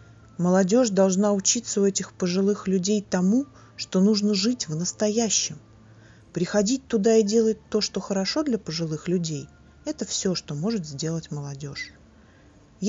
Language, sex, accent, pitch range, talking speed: Russian, female, native, 150-210 Hz, 135 wpm